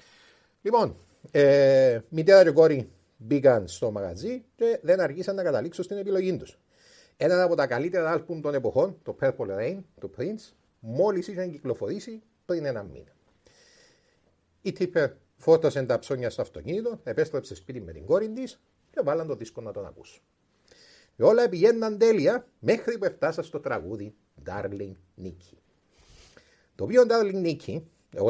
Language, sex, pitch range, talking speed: Greek, male, 150-245 Hz, 150 wpm